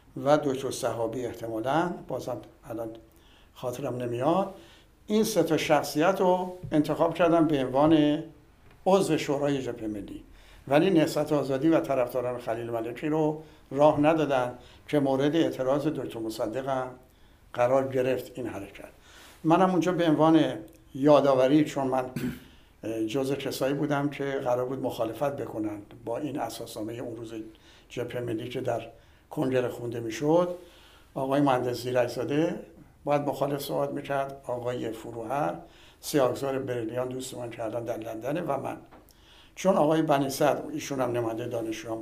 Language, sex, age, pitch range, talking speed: Persian, male, 60-79, 120-150 Hz, 130 wpm